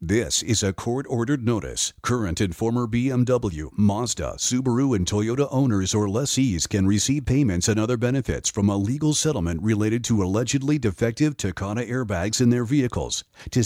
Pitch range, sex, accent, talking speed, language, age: 110-155 Hz, male, American, 160 wpm, English, 50-69